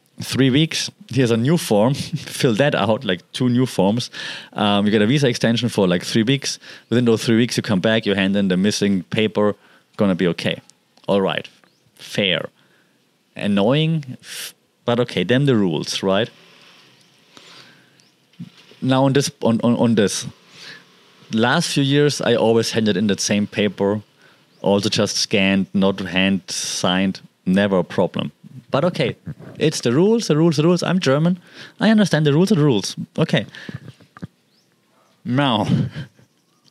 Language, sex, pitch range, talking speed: English, male, 105-150 Hz, 155 wpm